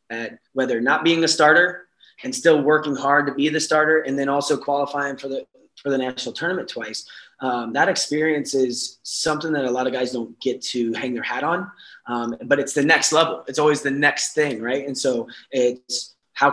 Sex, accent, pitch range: male, American, 120-145 Hz